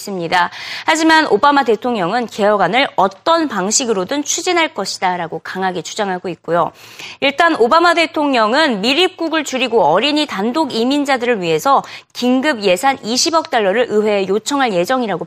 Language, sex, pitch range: Korean, female, 205-315 Hz